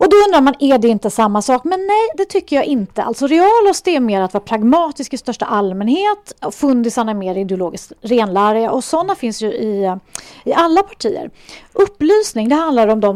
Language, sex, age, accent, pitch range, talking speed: English, female, 30-49, Swedish, 205-280 Hz, 195 wpm